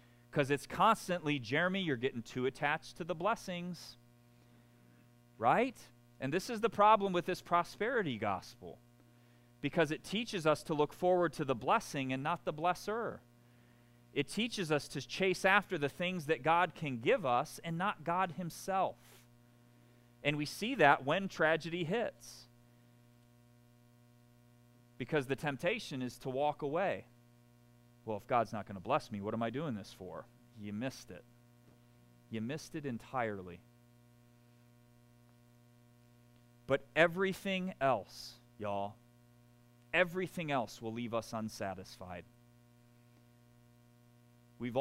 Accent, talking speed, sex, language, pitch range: American, 130 wpm, male, English, 120-150 Hz